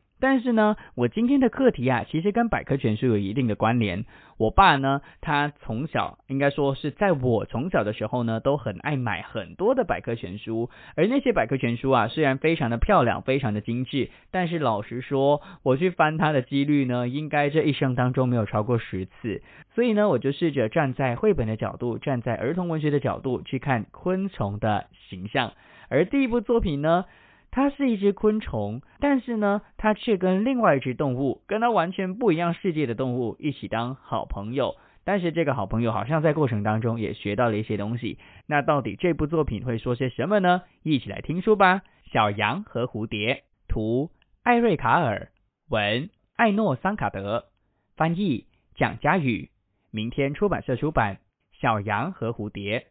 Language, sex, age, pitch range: English, male, 20-39, 115-185 Hz